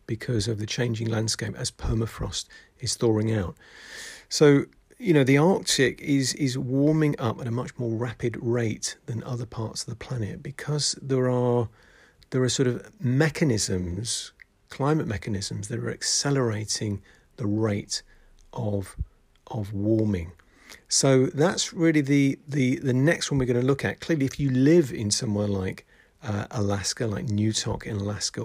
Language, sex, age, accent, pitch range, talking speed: English, male, 40-59, British, 105-135 Hz, 160 wpm